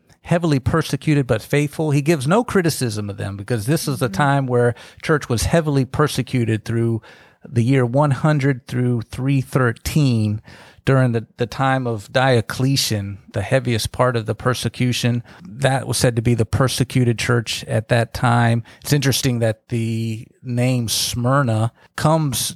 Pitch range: 110-135 Hz